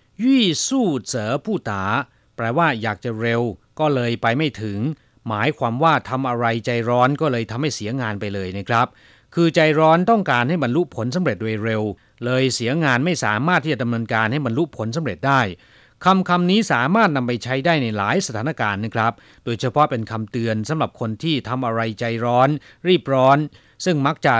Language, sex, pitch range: Chinese, male, 110-155 Hz